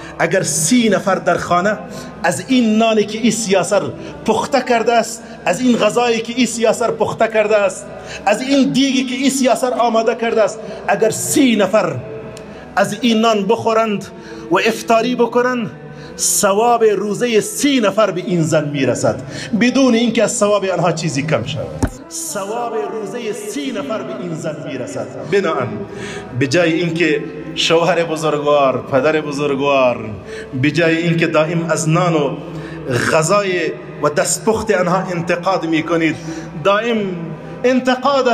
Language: English